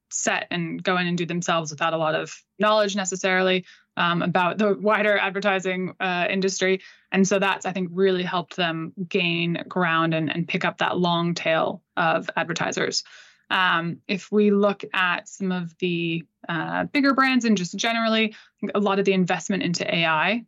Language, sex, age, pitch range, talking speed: English, female, 20-39, 170-195 Hz, 175 wpm